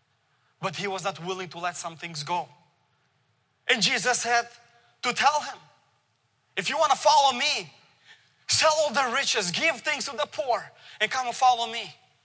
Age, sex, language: 20-39, male, English